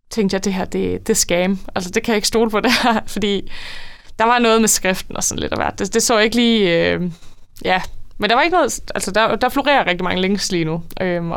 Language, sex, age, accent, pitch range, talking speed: Danish, female, 20-39, native, 175-215 Hz, 260 wpm